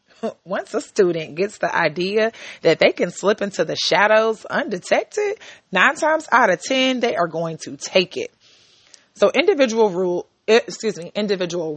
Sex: female